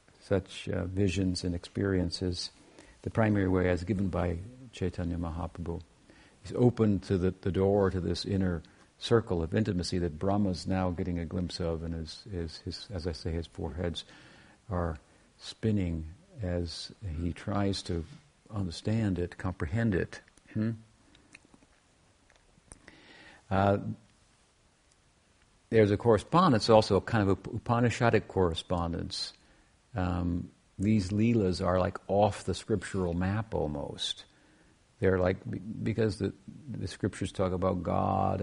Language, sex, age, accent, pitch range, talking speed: English, male, 60-79, American, 90-110 Hz, 130 wpm